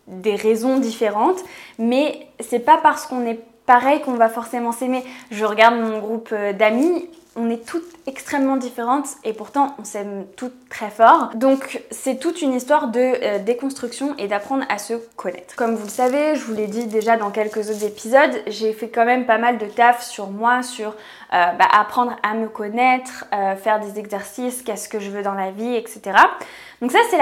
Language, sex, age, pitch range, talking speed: French, female, 20-39, 220-265 Hz, 195 wpm